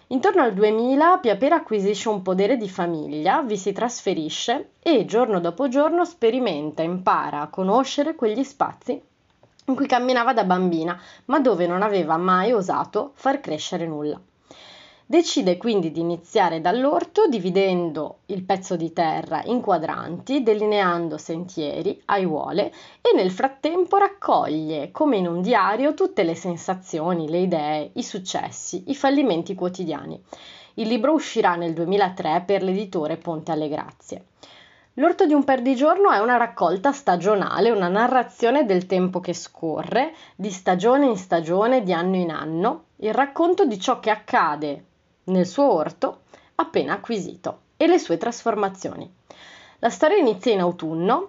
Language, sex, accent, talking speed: Italian, female, native, 140 wpm